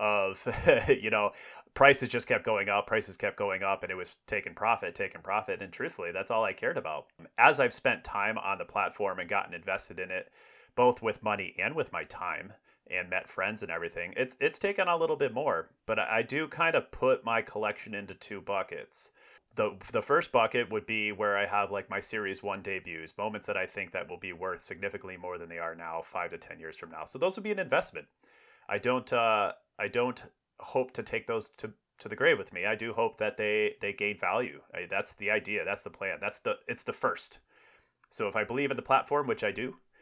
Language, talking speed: English, 230 wpm